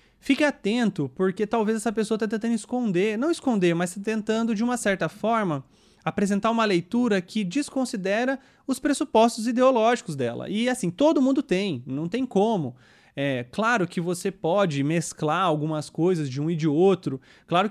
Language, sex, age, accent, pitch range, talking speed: English, male, 30-49, Brazilian, 165-230 Hz, 165 wpm